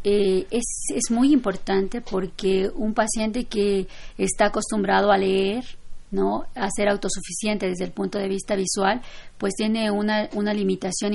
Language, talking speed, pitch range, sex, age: Spanish, 150 wpm, 190-210 Hz, female, 40-59